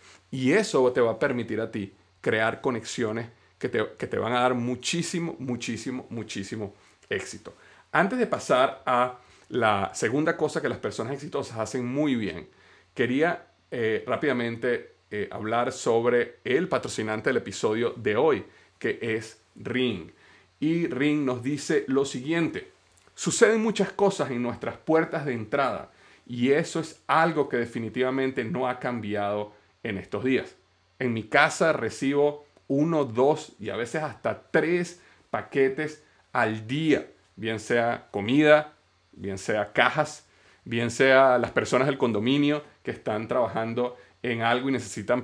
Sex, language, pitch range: male, Spanish, 110-150 Hz